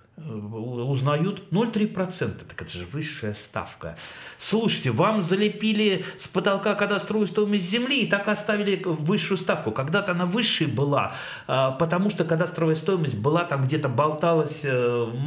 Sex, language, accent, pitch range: male, Russian, native, 120-190 Hz